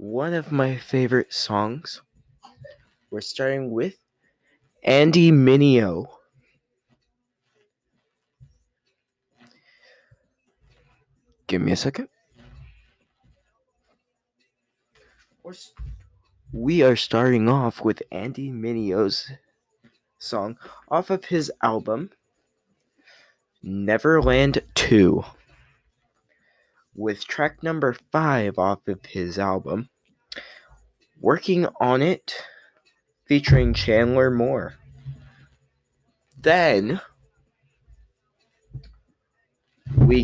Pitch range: 110-135 Hz